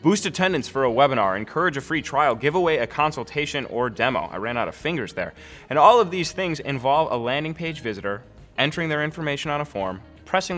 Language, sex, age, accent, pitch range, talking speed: English, male, 20-39, American, 100-145 Hz, 215 wpm